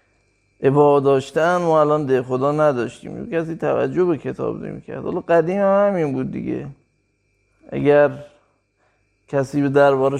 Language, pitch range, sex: Persian, 125-155 Hz, male